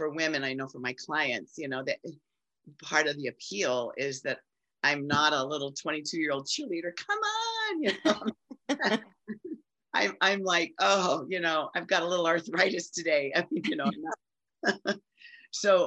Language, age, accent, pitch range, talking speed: English, 40-59, American, 135-170 Hz, 175 wpm